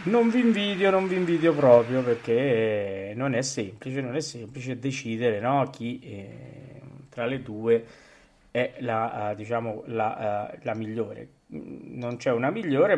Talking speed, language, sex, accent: 145 wpm, Italian, male, native